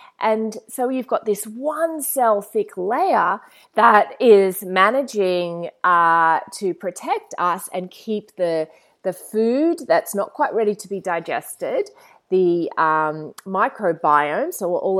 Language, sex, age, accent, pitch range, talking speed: English, female, 30-49, Australian, 170-235 Hz, 130 wpm